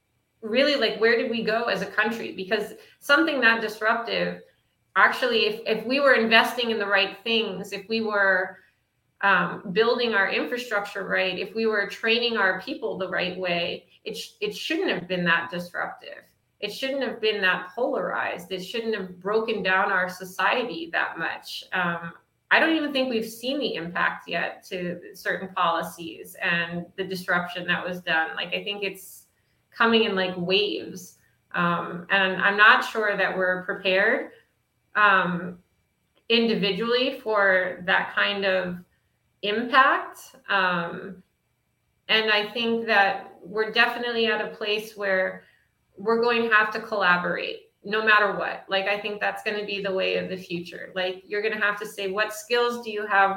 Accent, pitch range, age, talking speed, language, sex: American, 185-225 Hz, 30-49, 165 wpm, English, female